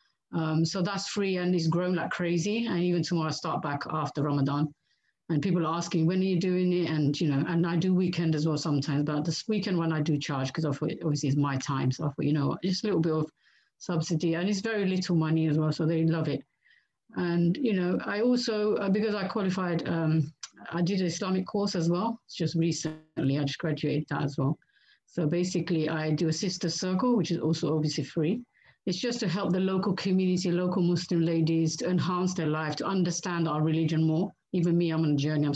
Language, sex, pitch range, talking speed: English, female, 155-185 Hz, 230 wpm